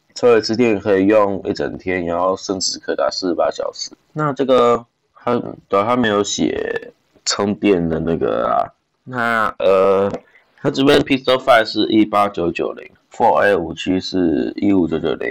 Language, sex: Chinese, male